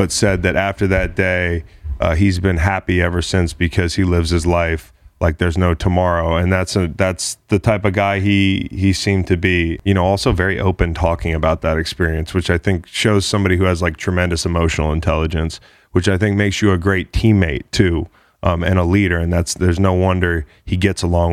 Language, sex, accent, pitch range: English, male, American, 85-95 Hz